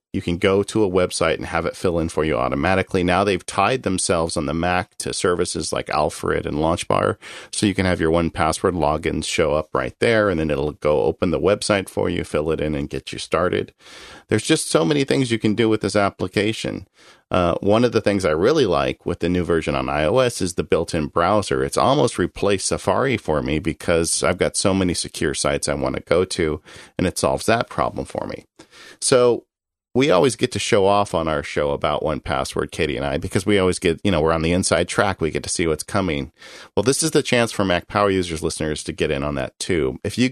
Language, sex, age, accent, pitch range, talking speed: English, male, 40-59, American, 80-100 Hz, 235 wpm